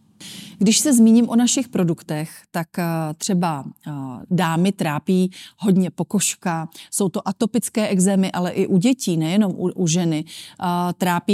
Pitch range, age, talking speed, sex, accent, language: 175-210 Hz, 30-49, 125 wpm, female, native, Czech